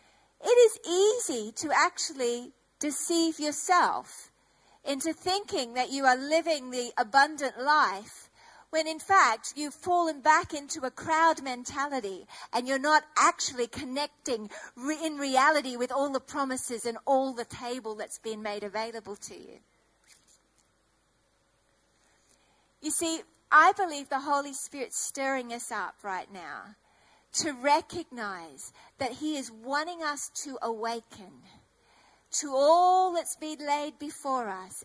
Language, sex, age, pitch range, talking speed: English, female, 40-59, 245-320 Hz, 130 wpm